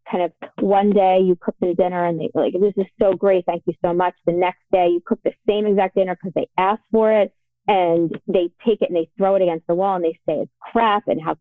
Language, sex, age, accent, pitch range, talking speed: English, female, 30-49, American, 180-225 Hz, 270 wpm